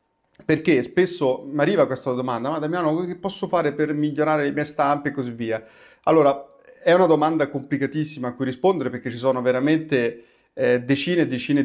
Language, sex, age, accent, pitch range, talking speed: Italian, male, 30-49, native, 125-155 Hz, 180 wpm